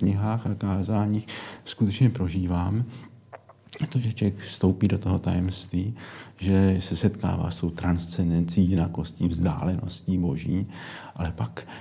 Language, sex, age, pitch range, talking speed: Slovak, male, 50-69, 85-100 Hz, 115 wpm